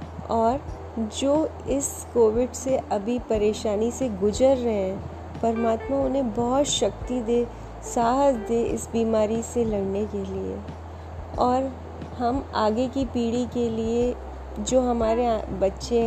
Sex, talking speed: female, 125 wpm